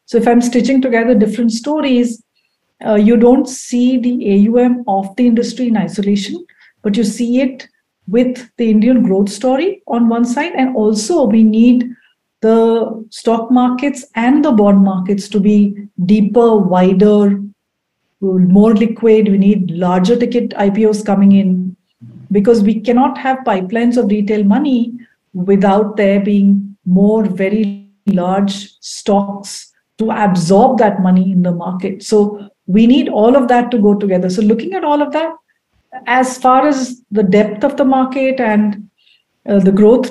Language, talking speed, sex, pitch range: English, 155 wpm, female, 200-245 Hz